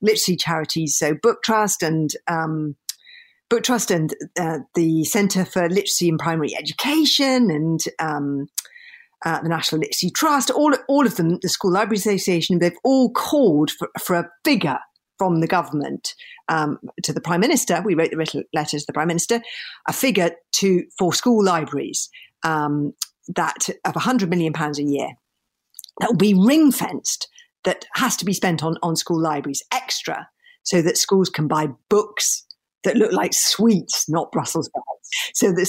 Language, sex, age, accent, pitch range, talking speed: English, female, 50-69, British, 165-240 Hz, 170 wpm